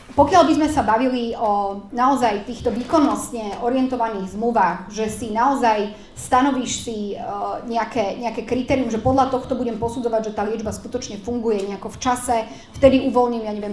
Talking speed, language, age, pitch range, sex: 155 wpm, Slovak, 30-49, 220-250 Hz, female